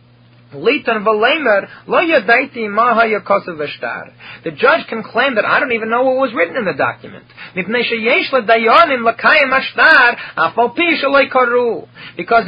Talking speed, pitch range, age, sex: 75 wpm, 210-265 Hz, 30-49, male